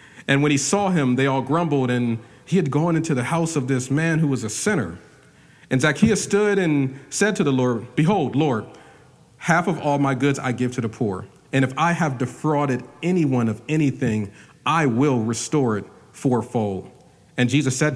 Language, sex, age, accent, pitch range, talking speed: English, male, 40-59, American, 120-150 Hz, 195 wpm